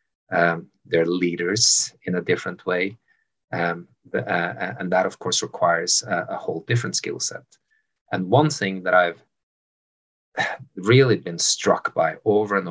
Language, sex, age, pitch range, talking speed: English, male, 30-49, 85-110 Hz, 150 wpm